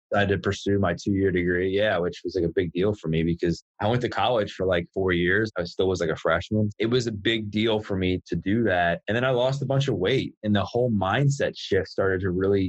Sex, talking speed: male, 275 wpm